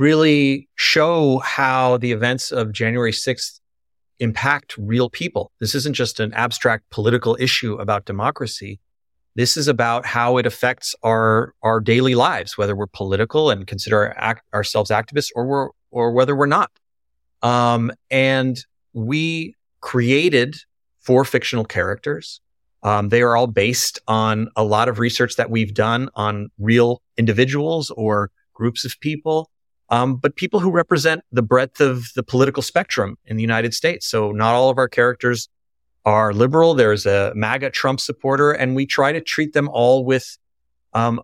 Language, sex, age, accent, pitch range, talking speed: English, male, 30-49, American, 110-130 Hz, 155 wpm